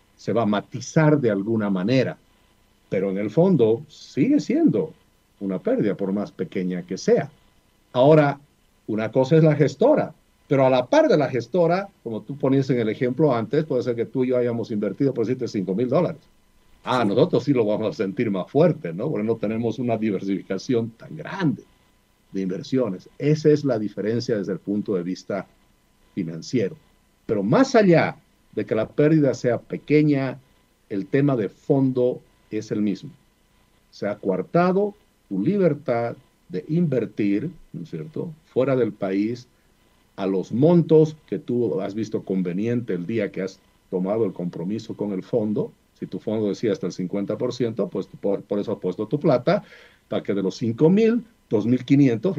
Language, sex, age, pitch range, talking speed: Spanish, male, 60-79, 100-150 Hz, 170 wpm